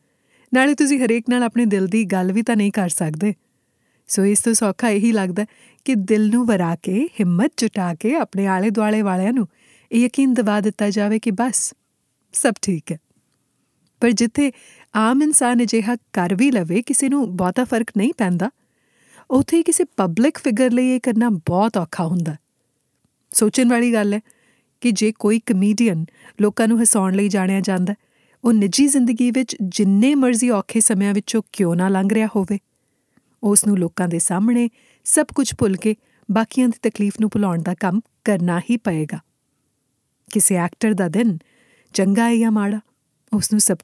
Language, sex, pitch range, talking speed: Punjabi, female, 195-240 Hz, 160 wpm